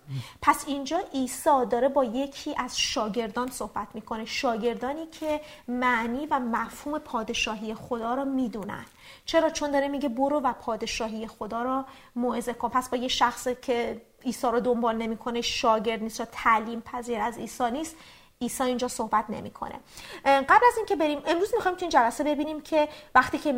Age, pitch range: 30-49, 235-290 Hz